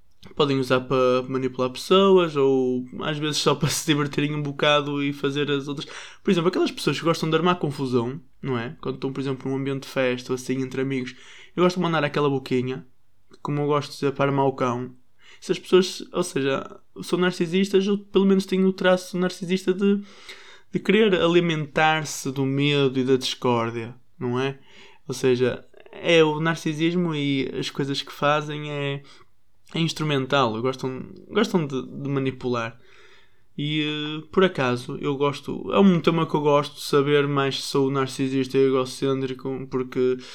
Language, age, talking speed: Portuguese, 20-39, 180 wpm